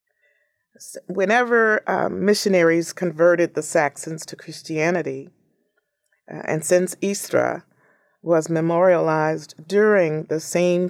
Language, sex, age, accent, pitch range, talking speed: English, female, 30-49, American, 155-195 Hz, 95 wpm